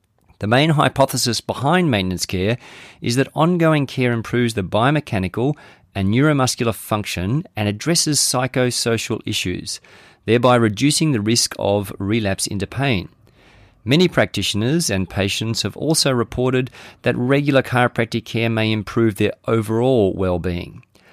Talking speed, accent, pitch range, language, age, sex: 125 wpm, Australian, 100-130 Hz, English, 40-59, male